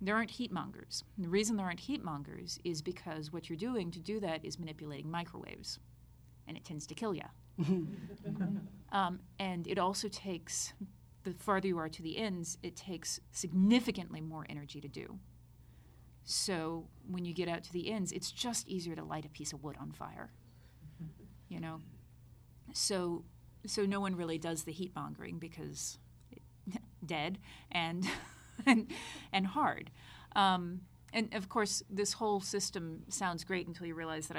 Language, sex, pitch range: English, female, 160-205 Hz